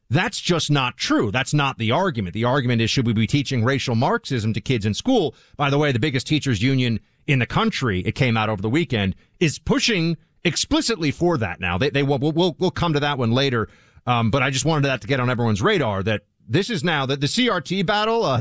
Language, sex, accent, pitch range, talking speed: English, male, American, 125-185 Hz, 240 wpm